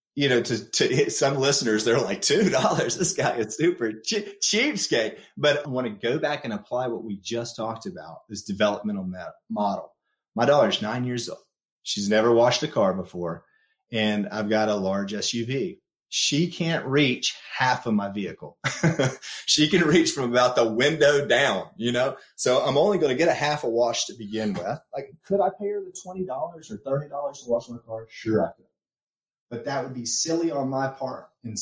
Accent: American